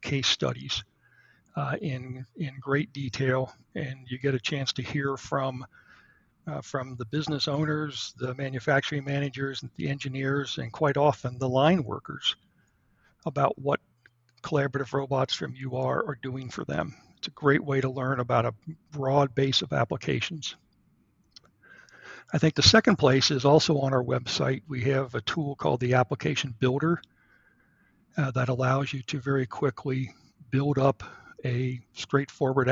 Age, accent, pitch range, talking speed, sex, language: 60-79, American, 130-145 Hz, 150 wpm, male, English